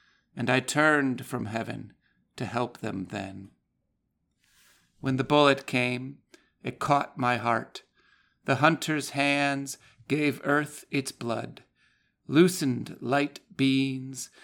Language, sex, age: English, male, 50-69